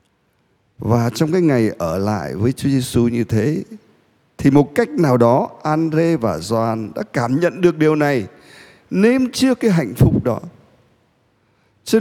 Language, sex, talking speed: Vietnamese, male, 160 wpm